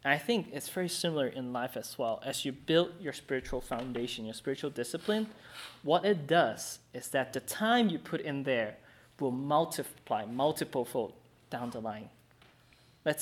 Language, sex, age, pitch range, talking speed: English, male, 20-39, 120-150 Hz, 170 wpm